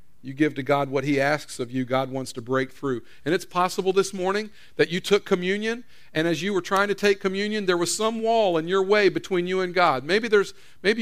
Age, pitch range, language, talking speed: 50-69, 140-200 Hz, English, 245 wpm